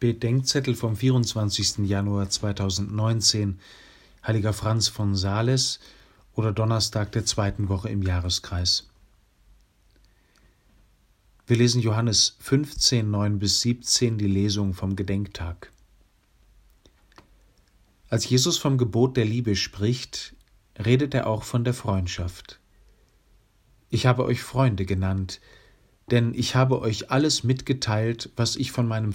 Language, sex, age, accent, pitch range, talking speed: German, male, 40-59, German, 100-125 Hz, 110 wpm